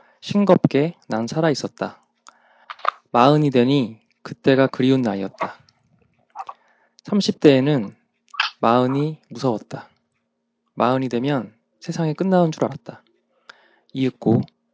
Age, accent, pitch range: 20-39, native, 120-165 Hz